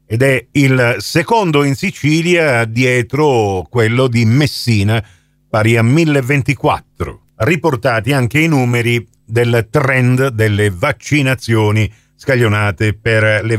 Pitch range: 115-155 Hz